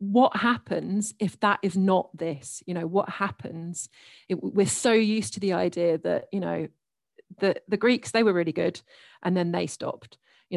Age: 40-59